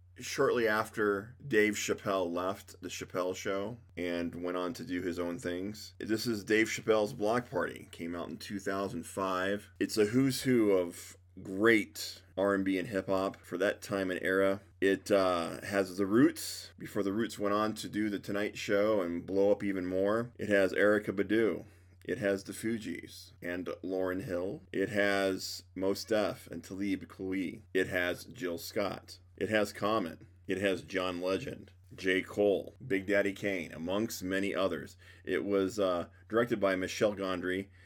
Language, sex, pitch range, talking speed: English, male, 90-105 Hz, 165 wpm